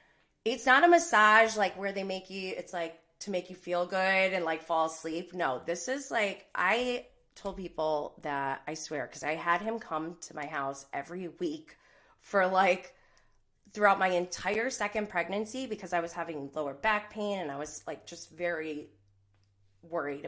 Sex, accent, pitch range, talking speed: female, American, 155-205 Hz, 180 wpm